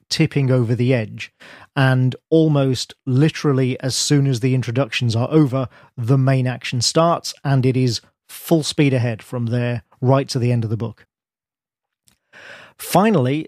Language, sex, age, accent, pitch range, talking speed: English, male, 40-59, British, 125-150 Hz, 150 wpm